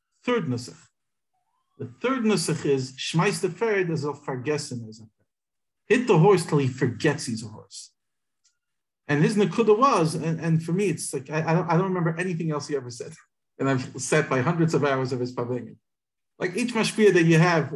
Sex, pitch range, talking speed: male, 140-210 Hz, 185 wpm